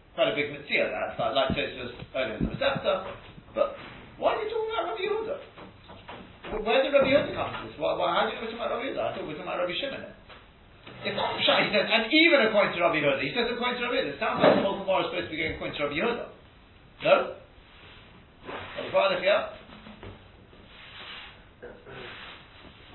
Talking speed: 235 wpm